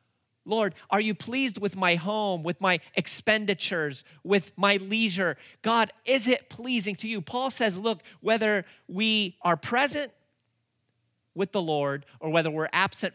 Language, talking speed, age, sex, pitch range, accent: English, 150 wpm, 40-59, male, 130-190 Hz, American